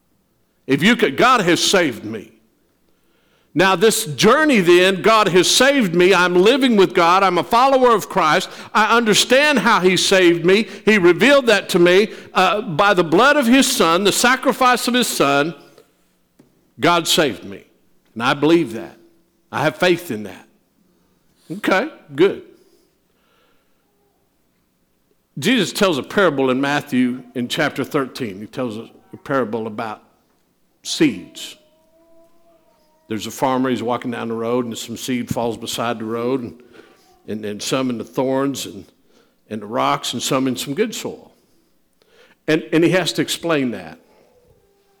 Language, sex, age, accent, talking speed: English, male, 60-79, American, 155 wpm